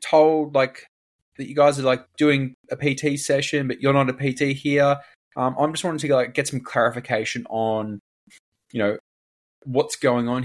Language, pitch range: English, 100-135 Hz